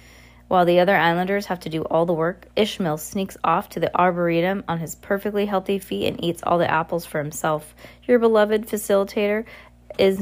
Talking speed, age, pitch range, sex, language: 190 wpm, 20-39, 150-200 Hz, female, English